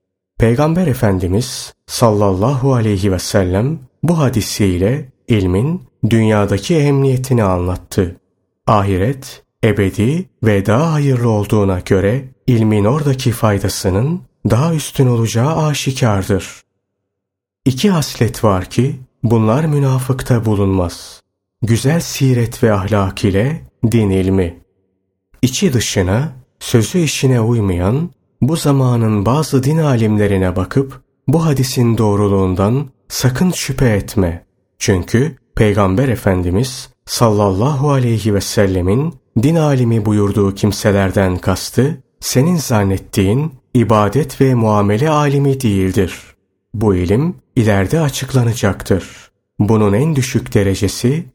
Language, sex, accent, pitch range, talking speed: Turkish, male, native, 100-135 Hz, 100 wpm